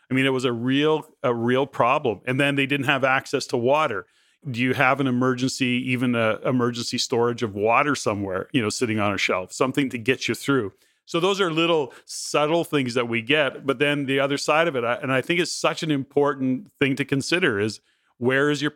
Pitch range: 120-145 Hz